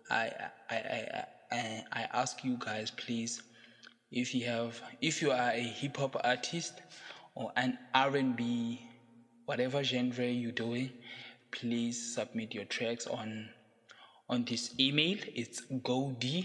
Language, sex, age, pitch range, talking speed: English, male, 20-39, 115-130 Hz, 135 wpm